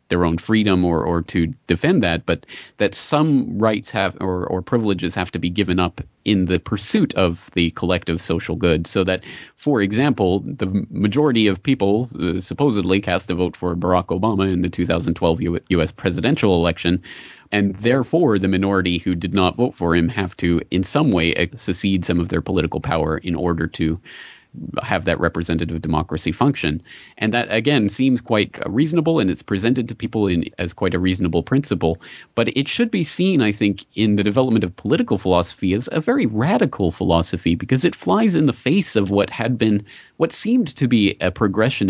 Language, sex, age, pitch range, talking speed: English, male, 30-49, 85-115 Hz, 190 wpm